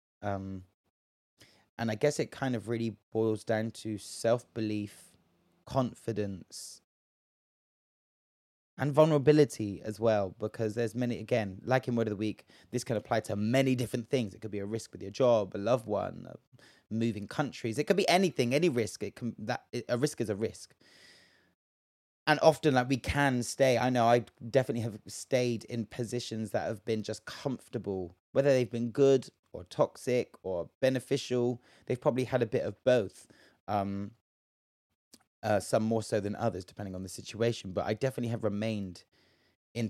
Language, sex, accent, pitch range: English, male, British, 105-125 Hz